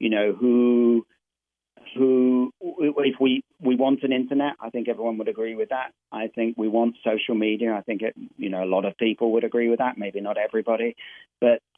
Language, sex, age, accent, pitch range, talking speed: English, male, 40-59, British, 110-125 Hz, 205 wpm